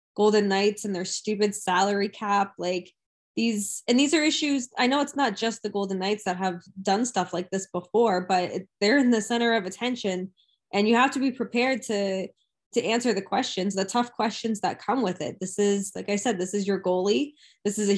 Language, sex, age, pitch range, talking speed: English, female, 10-29, 195-235 Hz, 215 wpm